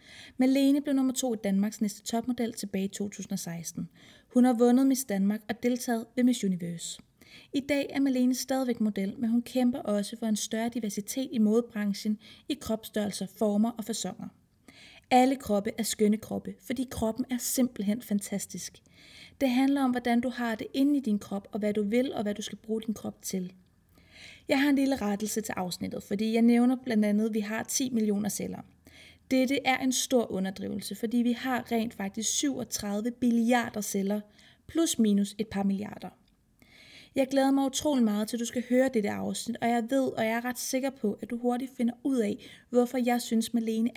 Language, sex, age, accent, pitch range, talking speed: Danish, female, 30-49, native, 210-250 Hz, 190 wpm